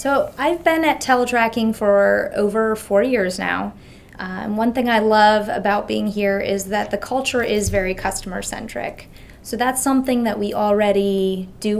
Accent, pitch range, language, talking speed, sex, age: American, 200-230 Hz, English, 175 wpm, female, 20-39